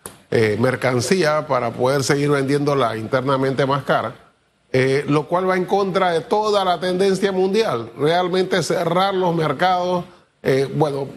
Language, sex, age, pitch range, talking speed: Spanish, male, 30-49, 135-180 Hz, 140 wpm